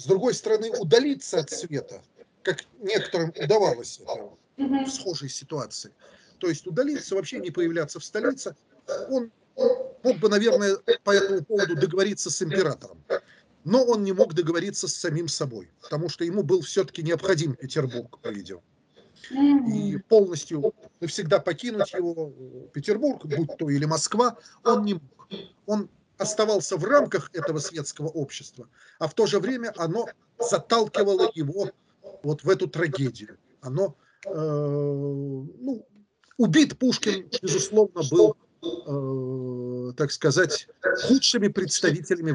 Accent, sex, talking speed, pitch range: native, male, 130 wpm, 150-215 Hz